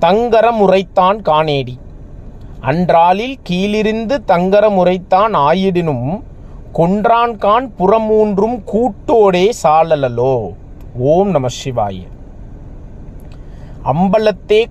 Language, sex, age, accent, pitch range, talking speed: Tamil, male, 30-49, native, 150-210 Hz, 55 wpm